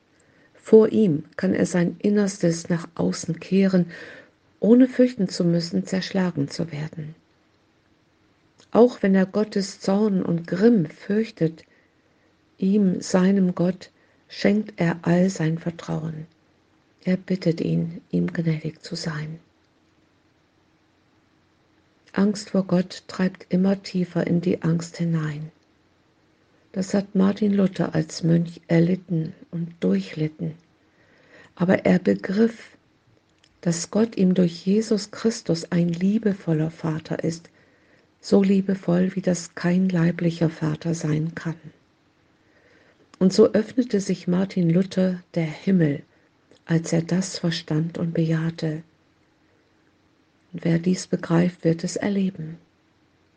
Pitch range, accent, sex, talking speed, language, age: 160-195 Hz, German, female, 115 wpm, German, 50-69